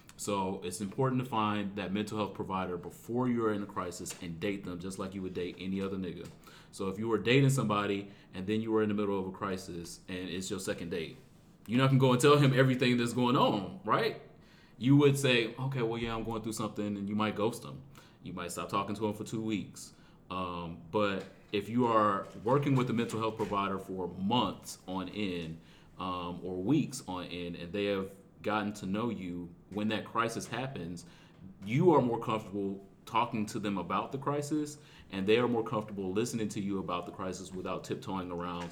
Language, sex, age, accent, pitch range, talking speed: English, male, 30-49, American, 90-110 Hz, 215 wpm